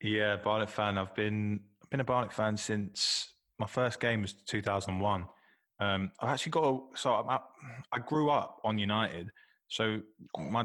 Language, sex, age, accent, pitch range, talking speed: English, male, 20-39, British, 95-110 Hz, 190 wpm